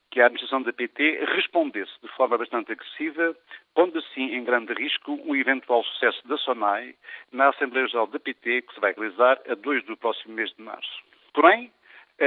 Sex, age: male, 60-79